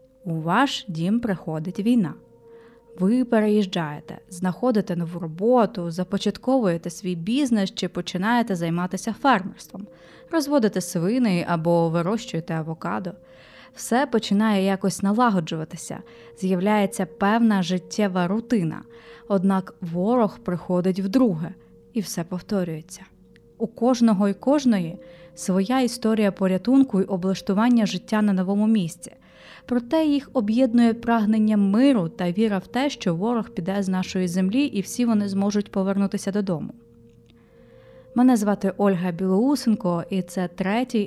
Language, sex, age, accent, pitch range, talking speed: Ukrainian, female, 20-39, native, 180-230 Hz, 115 wpm